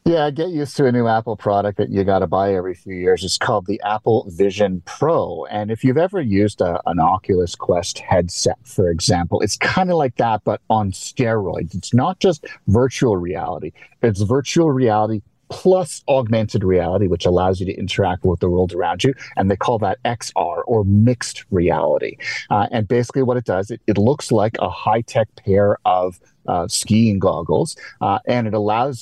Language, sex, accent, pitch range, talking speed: English, male, American, 95-120 Hz, 190 wpm